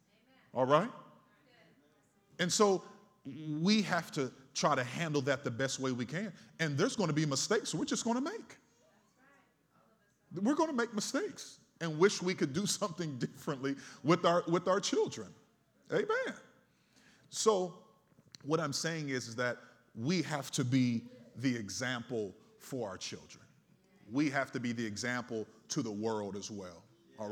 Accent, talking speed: American, 160 wpm